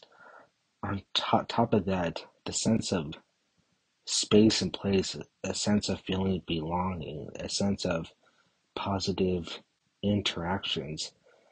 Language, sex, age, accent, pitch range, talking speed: English, male, 30-49, American, 95-105 Hz, 110 wpm